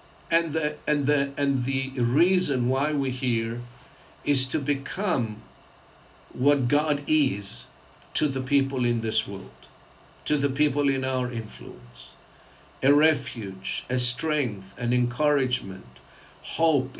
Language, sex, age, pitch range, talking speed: English, male, 60-79, 125-155 Hz, 125 wpm